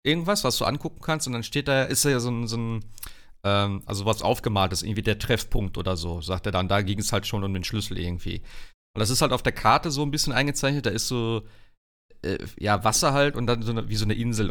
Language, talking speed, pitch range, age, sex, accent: German, 265 wpm, 105-145 Hz, 40-59, male, German